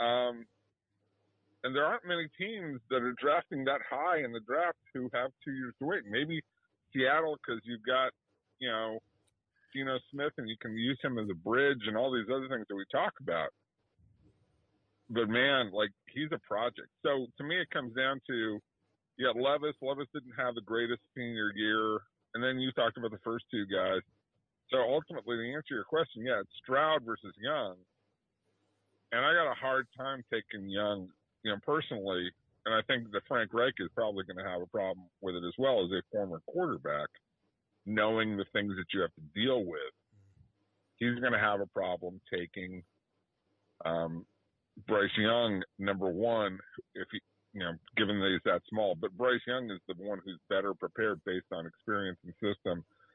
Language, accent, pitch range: English, American, 100-130 Hz